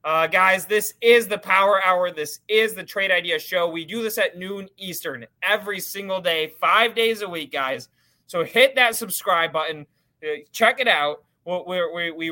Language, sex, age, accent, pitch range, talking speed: English, male, 20-39, American, 150-190 Hz, 175 wpm